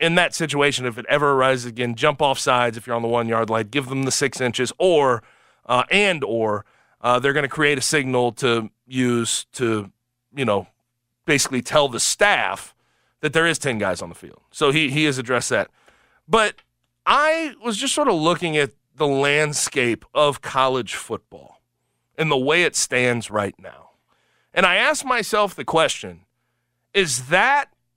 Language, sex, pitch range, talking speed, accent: English, male, 125-200 Hz, 180 wpm, American